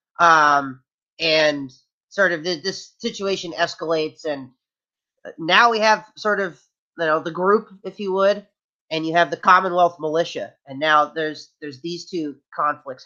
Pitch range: 150-205 Hz